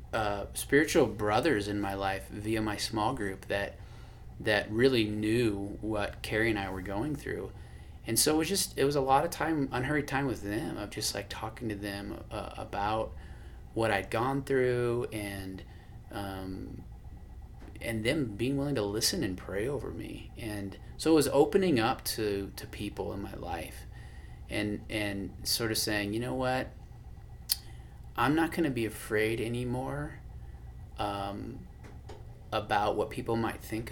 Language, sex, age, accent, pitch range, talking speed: English, male, 30-49, American, 100-125 Hz, 165 wpm